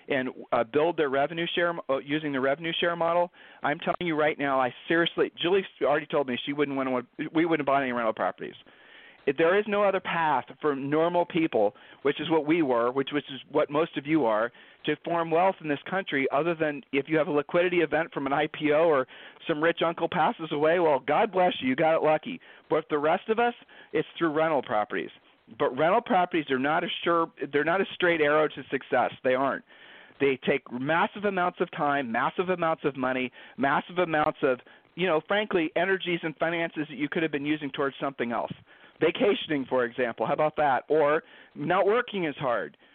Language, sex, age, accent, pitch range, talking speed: English, male, 40-59, American, 140-170 Hz, 210 wpm